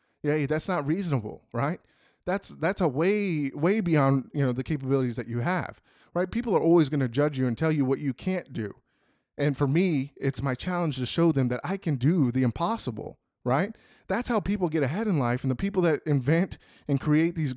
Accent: American